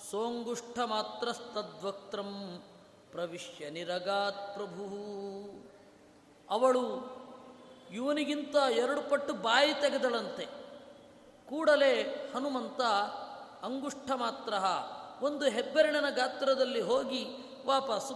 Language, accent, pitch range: Kannada, native, 205-265 Hz